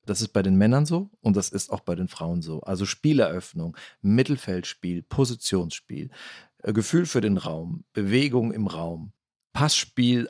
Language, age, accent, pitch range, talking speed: German, 40-59, German, 95-120 Hz, 150 wpm